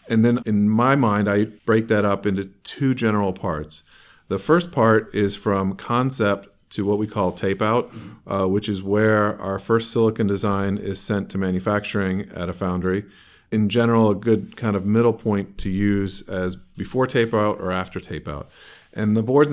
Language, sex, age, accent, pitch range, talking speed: English, male, 40-59, American, 95-110 Hz, 175 wpm